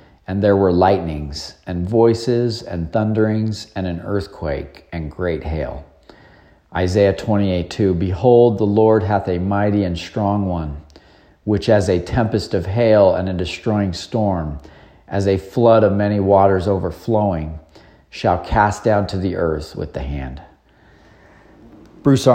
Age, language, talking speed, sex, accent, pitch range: 40-59, English, 140 wpm, male, American, 85-110 Hz